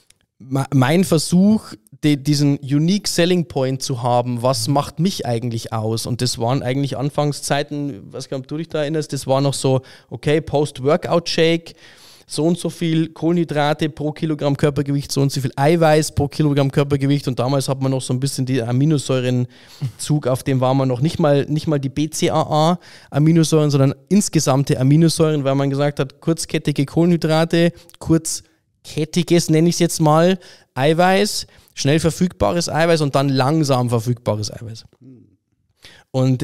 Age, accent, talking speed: 20-39, German, 150 wpm